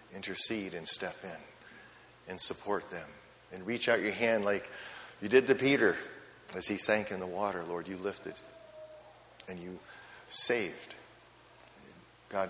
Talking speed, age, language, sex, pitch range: 145 wpm, 40-59, English, male, 95-110 Hz